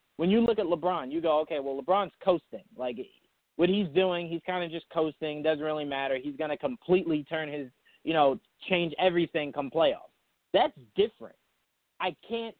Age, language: 30-49, English